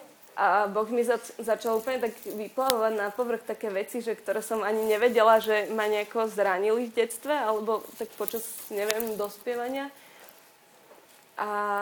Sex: female